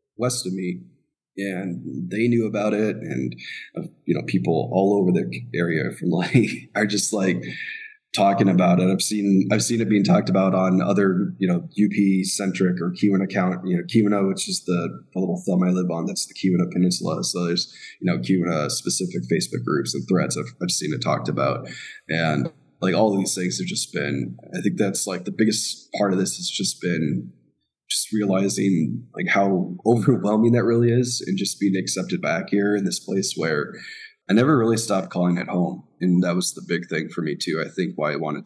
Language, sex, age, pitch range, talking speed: English, male, 20-39, 90-115 Hz, 205 wpm